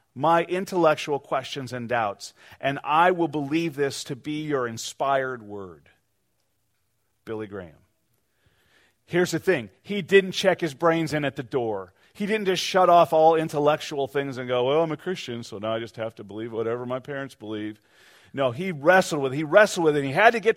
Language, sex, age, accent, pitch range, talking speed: English, male, 40-59, American, 115-165 Hz, 200 wpm